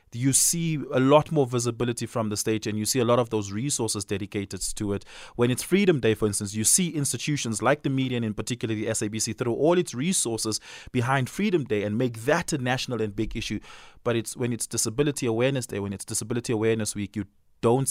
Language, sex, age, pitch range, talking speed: English, male, 30-49, 105-135 Hz, 220 wpm